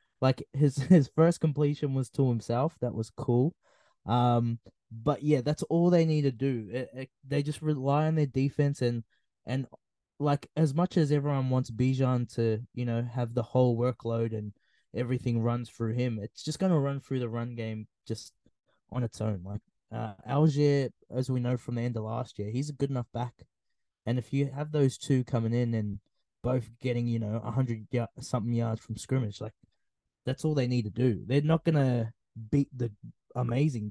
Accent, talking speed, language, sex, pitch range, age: Australian, 195 wpm, English, male, 115-140 Hz, 20-39